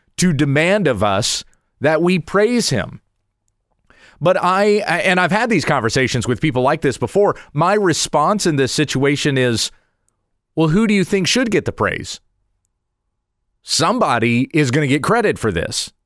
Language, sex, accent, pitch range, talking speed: English, male, American, 125-180 Hz, 160 wpm